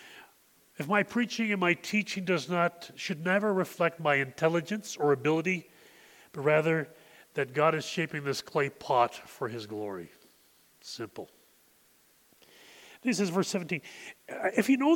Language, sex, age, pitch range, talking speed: English, male, 40-59, 155-215 Hz, 145 wpm